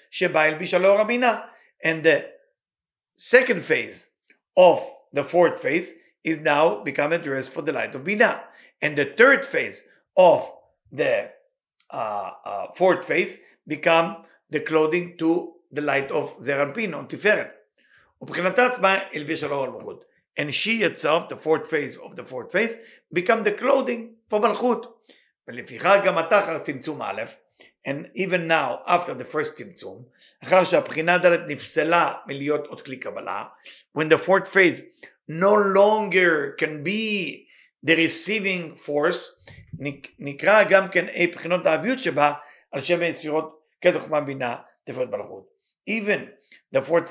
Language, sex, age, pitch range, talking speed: English, male, 50-69, 155-215 Hz, 95 wpm